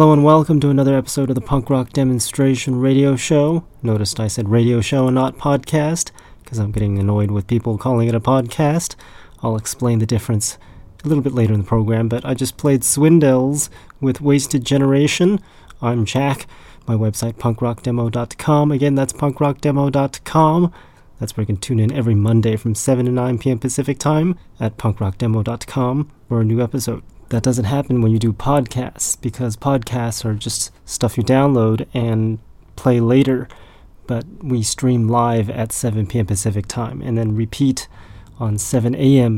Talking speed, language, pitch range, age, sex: 170 wpm, English, 110-135 Hz, 30-49, male